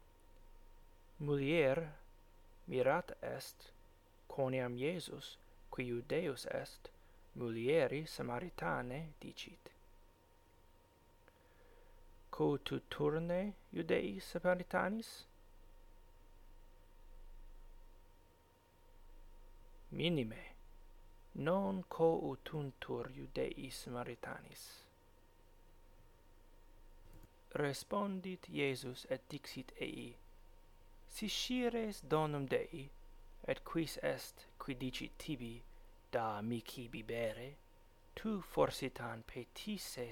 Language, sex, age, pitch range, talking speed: English, male, 30-49, 85-135 Hz, 65 wpm